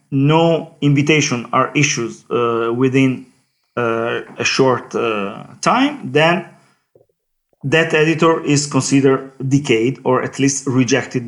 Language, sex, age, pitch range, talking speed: English, male, 40-59, 120-145 Hz, 110 wpm